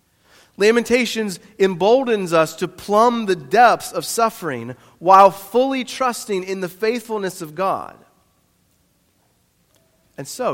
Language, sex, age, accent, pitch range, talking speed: English, male, 40-59, American, 125-190 Hz, 110 wpm